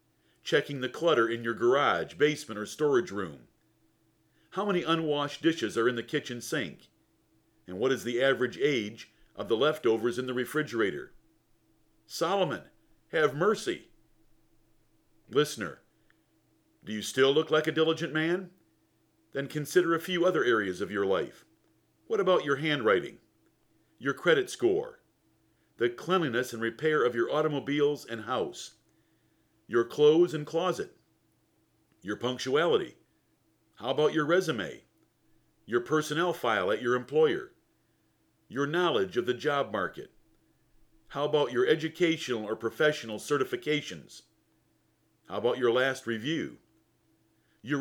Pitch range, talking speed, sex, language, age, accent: 115-160 Hz, 130 wpm, male, English, 50-69, American